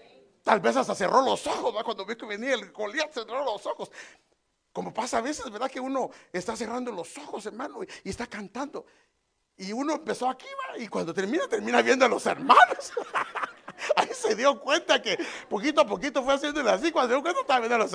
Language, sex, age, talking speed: English, male, 60-79, 215 wpm